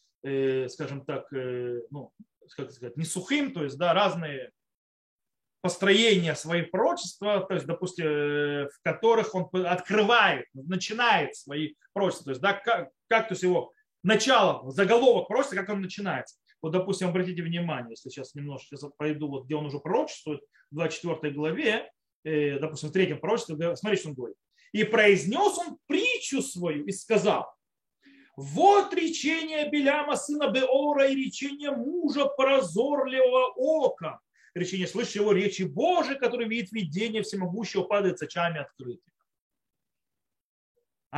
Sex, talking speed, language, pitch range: male, 130 wpm, Russian, 155-250 Hz